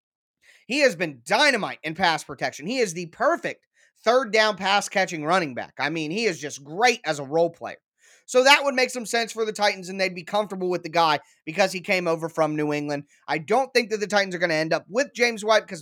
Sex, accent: male, American